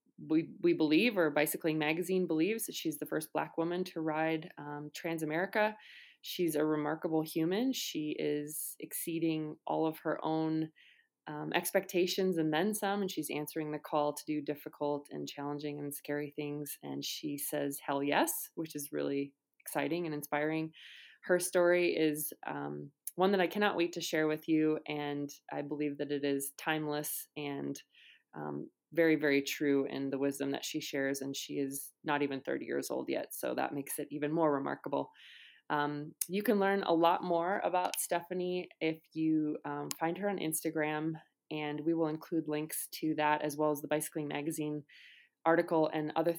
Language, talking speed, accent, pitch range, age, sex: English, 175 wpm, American, 150-165 Hz, 20-39, female